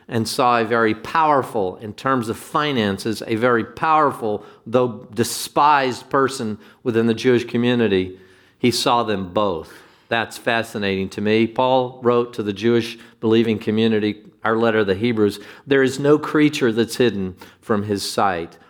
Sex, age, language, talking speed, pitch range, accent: male, 50-69, English, 155 wpm, 110-130 Hz, American